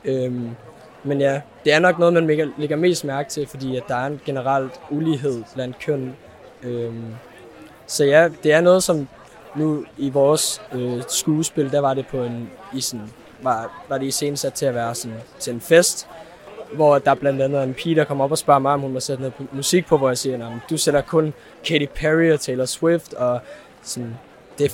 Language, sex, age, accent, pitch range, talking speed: Danish, male, 20-39, native, 130-155 Hz, 205 wpm